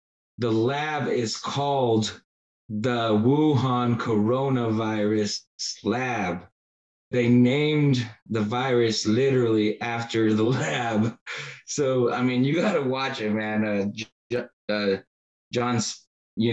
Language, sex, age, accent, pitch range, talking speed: English, male, 20-39, American, 105-130 Hz, 105 wpm